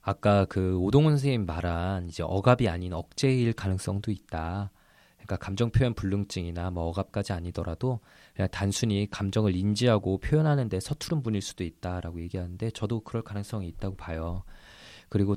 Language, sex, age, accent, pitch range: Korean, male, 20-39, native, 95-120 Hz